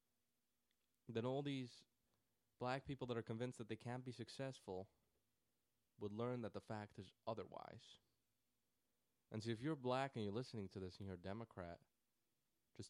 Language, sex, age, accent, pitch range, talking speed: English, male, 20-39, American, 95-120 Hz, 165 wpm